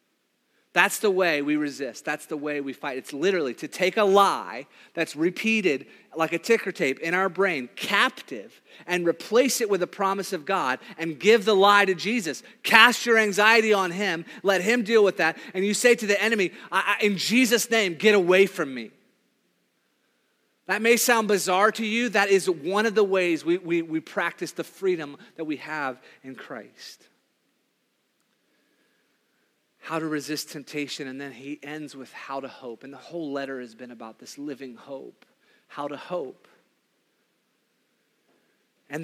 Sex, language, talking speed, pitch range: male, English, 175 wpm, 145-200 Hz